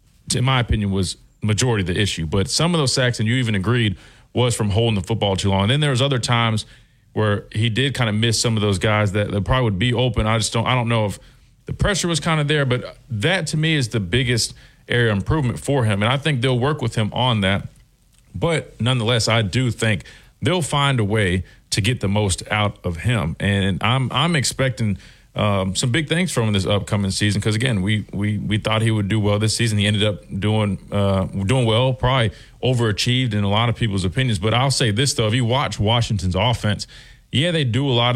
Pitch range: 105-130 Hz